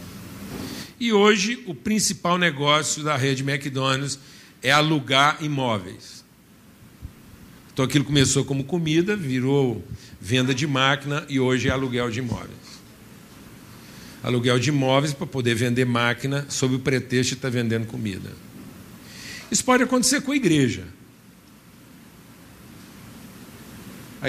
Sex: male